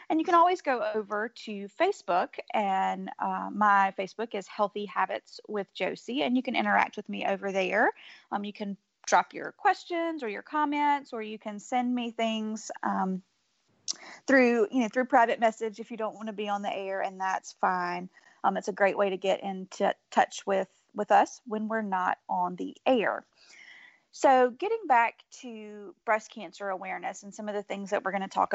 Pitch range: 205-265 Hz